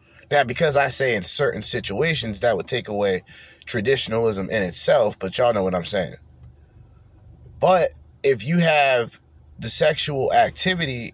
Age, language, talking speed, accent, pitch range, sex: 30-49, English, 145 wpm, American, 85-130 Hz, male